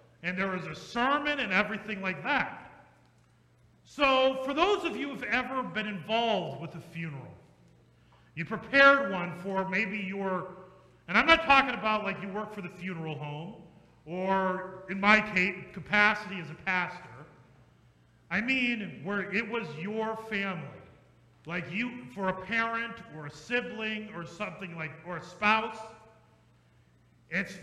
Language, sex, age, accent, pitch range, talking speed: English, male, 40-59, American, 180-235 Hz, 150 wpm